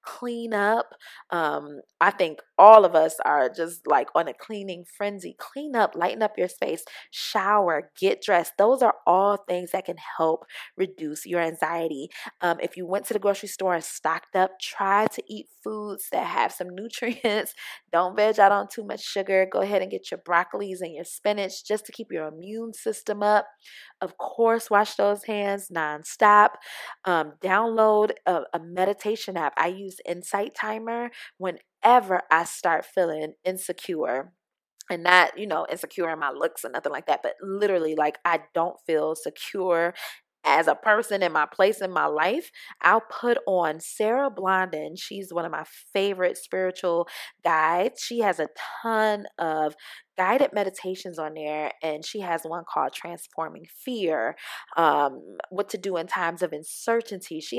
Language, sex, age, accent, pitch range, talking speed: English, female, 20-39, American, 170-215 Hz, 170 wpm